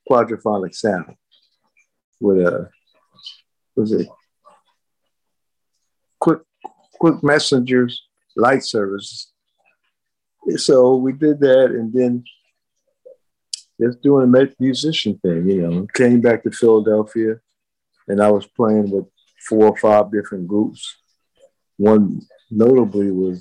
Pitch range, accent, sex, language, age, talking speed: 100-125 Hz, American, male, English, 50-69, 105 wpm